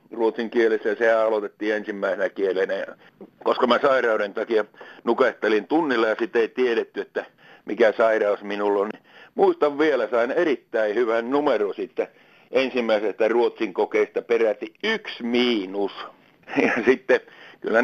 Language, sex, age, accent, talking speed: Finnish, male, 60-79, native, 130 wpm